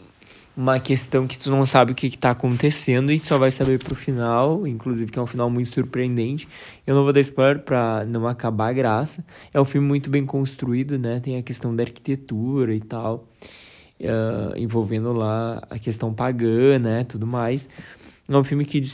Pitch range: 120-135 Hz